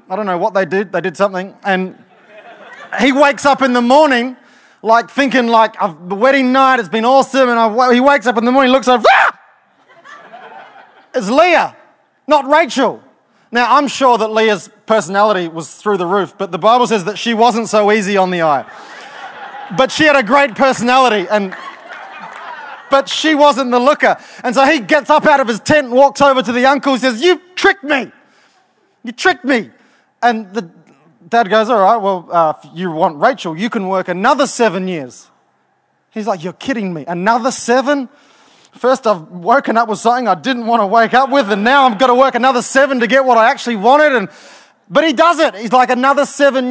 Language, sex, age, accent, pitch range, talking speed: English, male, 20-39, Australian, 210-270 Hz, 200 wpm